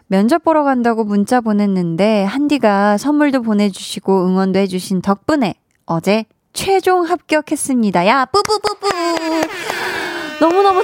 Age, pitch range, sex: 20-39, 200-290 Hz, female